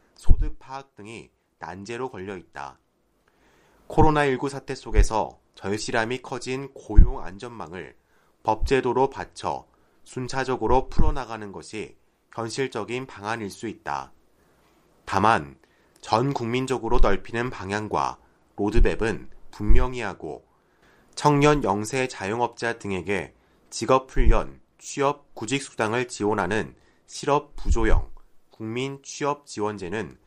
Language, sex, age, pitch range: Korean, male, 30-49, 105-135 Hz